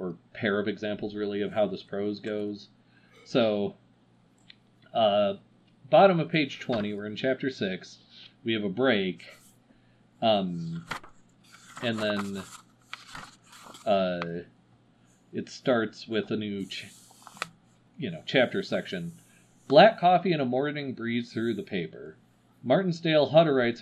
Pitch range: 100-140 Hz